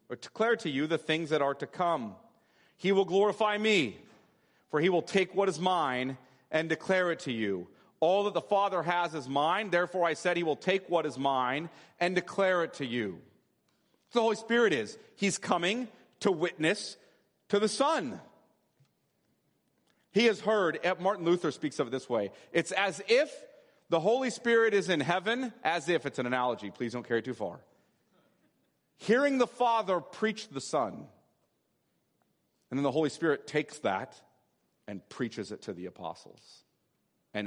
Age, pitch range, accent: 40-59, 130-200 Hz, American